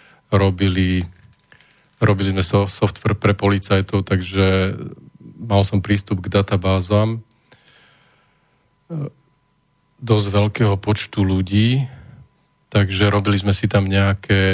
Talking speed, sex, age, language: 90 wpm, male, 40-59, Slovak